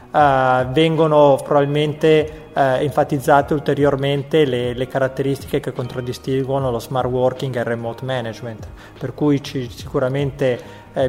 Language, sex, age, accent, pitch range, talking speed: Italian, male, 20-39, native, 130-150 Hz, 110 wpm